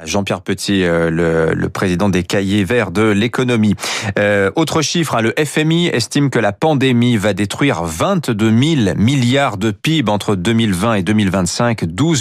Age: 40-59